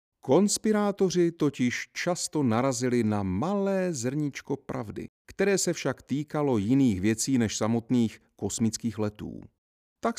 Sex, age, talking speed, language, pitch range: male, 40-59, 110 wpm, Czech, 105-140 Hz